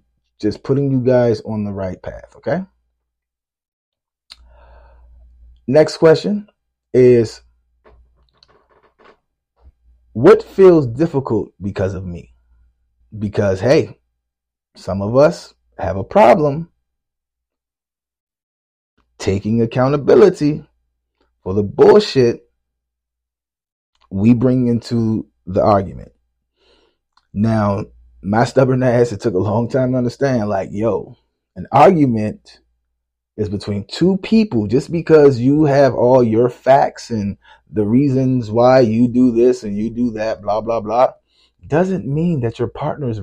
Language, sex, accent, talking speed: English, male, American, 110 wpm